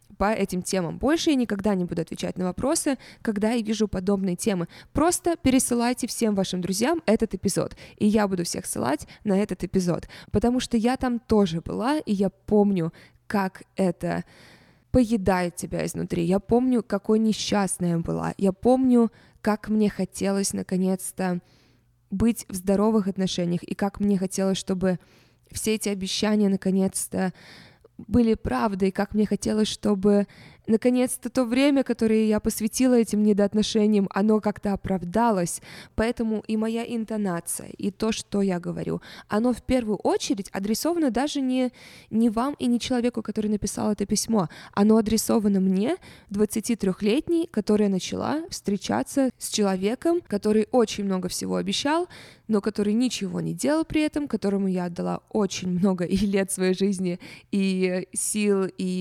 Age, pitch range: 20-39, 190-230 Hz